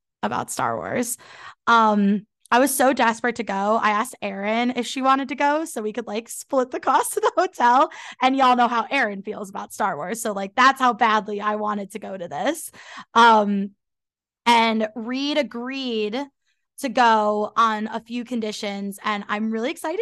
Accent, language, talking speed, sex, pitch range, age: American, English, 185 wpm, female, 215-265 Hz, 20-39